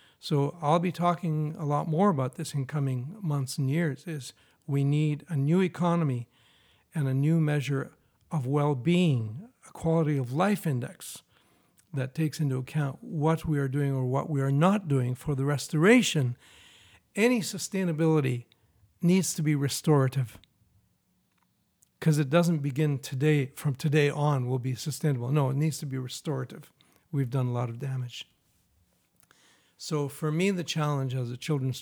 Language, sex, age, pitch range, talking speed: English, male, 60-79, 130-160 Hz, 160 wpm